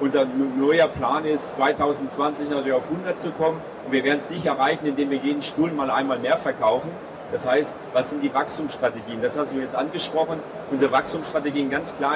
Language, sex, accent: German, male, German